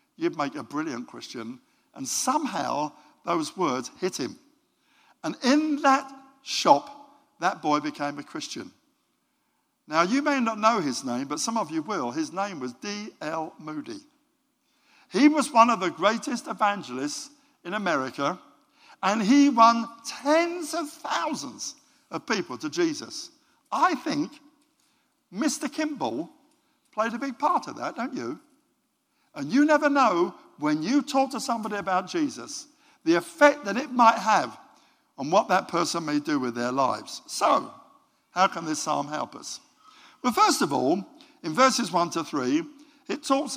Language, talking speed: English, 155 wpm